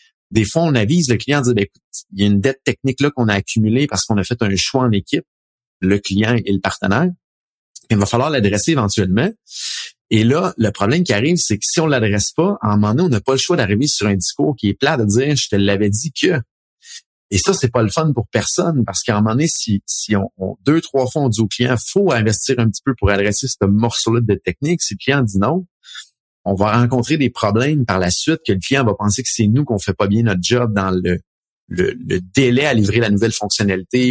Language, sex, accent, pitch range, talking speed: French, male, Canadian, 100-135 Hz, 260 wpm